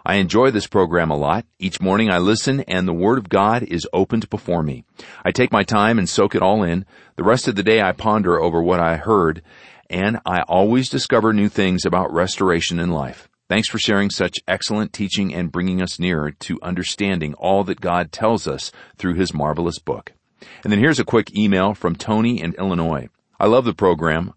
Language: English